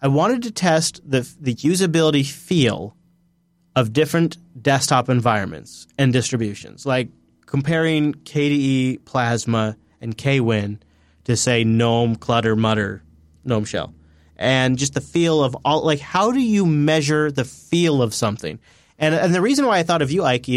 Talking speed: 150 wpm